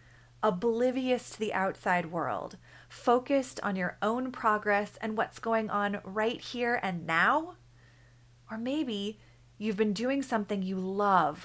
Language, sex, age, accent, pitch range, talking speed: English, female, 30-49, American, 180-245 Hz, 135 wpm